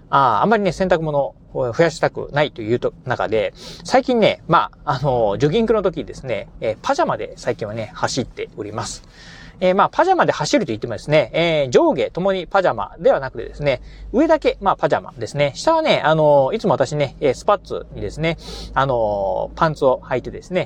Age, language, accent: 40-59, Japanese, native